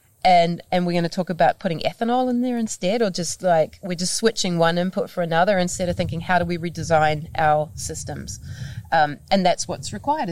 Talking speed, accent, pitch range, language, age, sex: 210 wpm, Australian, 160-200 Hz, English, 30-49, female